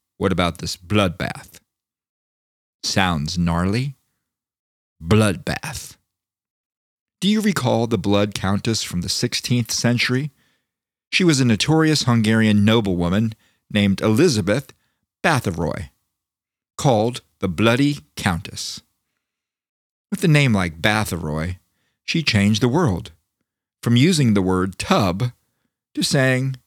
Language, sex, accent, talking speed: English, male, American, 105 wpm